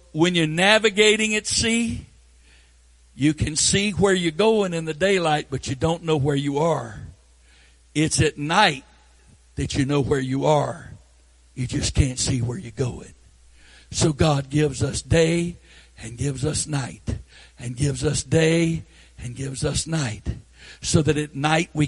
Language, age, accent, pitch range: English, 60-79, American, 100-170 Hz